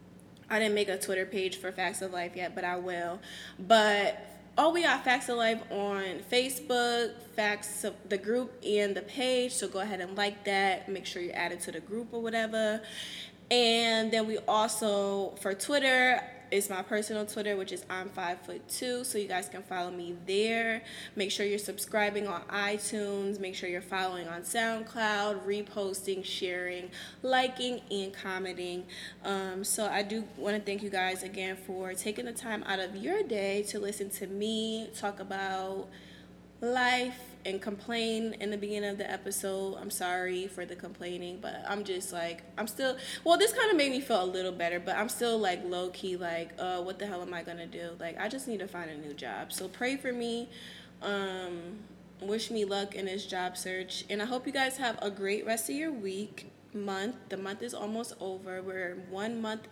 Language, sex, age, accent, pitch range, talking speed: English, female, 20-39, American, 185-220 Hz, 195 wpm